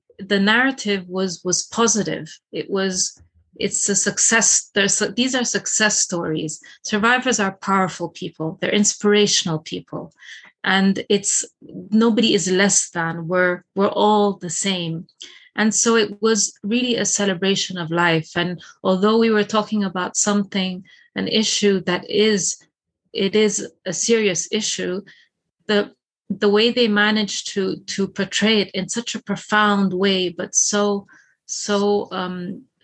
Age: 30-49